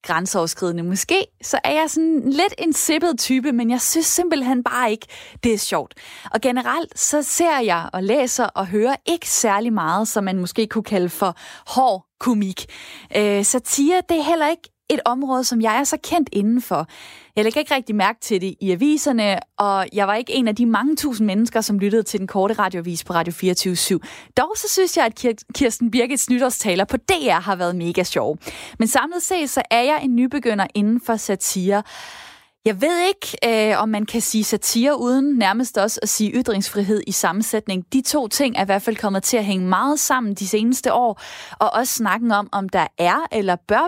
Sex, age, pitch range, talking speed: female, 20-39, 195-260 Hz, 200 wpm